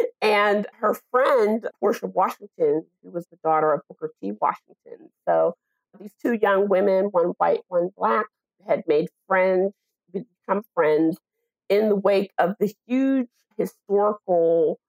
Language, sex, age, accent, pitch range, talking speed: English, female, 40-59, American, 175-255 Hz, 135 wpm